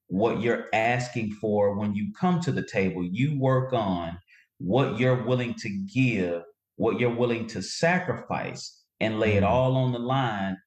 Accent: American